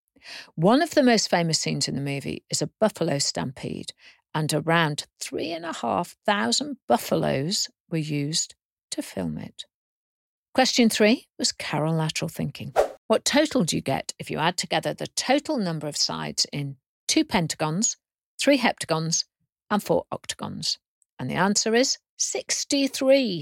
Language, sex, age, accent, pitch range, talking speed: English, female, 50-69, British, 160-250 Hz, 150 wpm